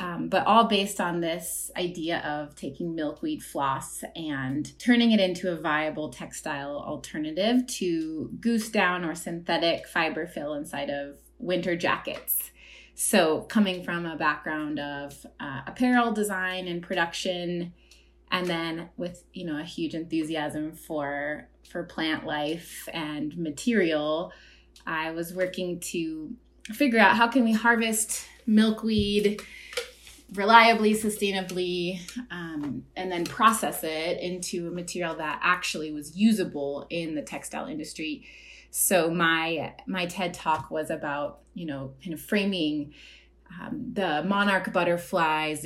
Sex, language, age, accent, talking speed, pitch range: female, English, 30-49, American, 130 wpm, 155-200 Hz